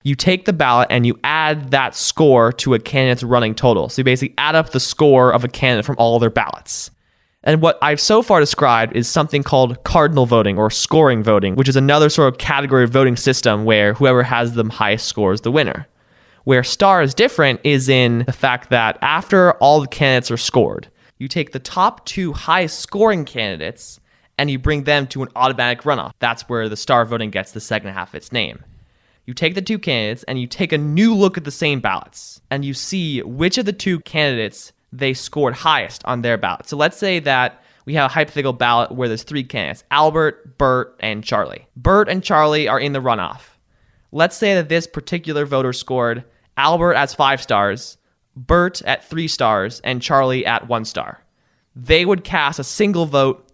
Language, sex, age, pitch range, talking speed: English, male, 20-39, 120-155 Hz, 205 wpm